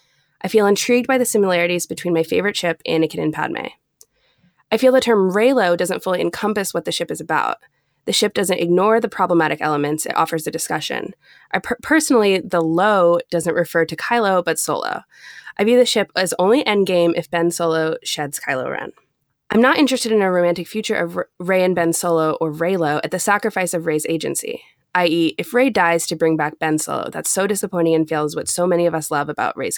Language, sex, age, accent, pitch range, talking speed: English, female, 20-39, American, 165-220 Hz, 210 wpm